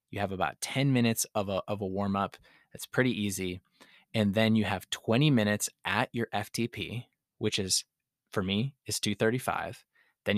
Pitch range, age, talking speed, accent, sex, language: 100-115 Hz, 20-39, 175 wpm, American, male, English